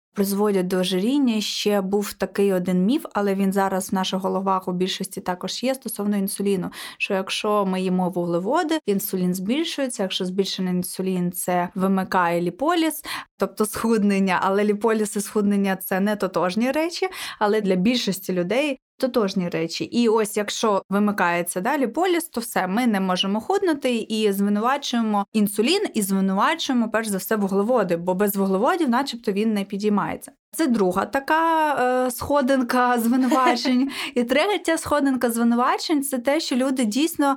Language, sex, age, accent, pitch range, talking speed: Ukrainian, female, 20-39, native, 195-260 Hz, 150 wpm